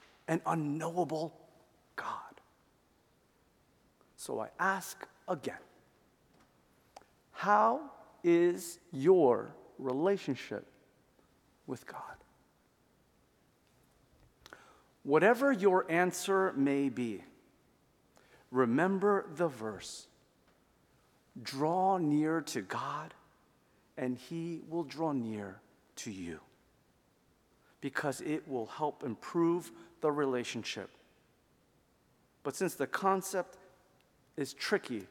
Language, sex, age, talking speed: English, male, 50-69, 75 wpm